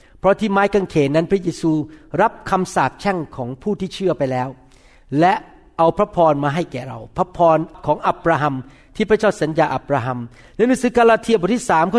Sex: male